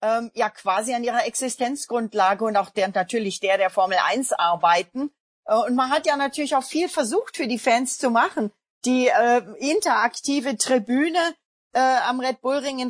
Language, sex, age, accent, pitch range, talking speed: German, female, 40-59, German, 210-255 Hz, 170 wpm